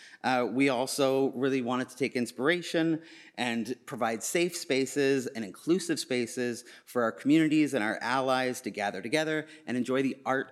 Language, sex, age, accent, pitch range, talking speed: English, male, 30-49, American, 120-155 Hz, 160 wpm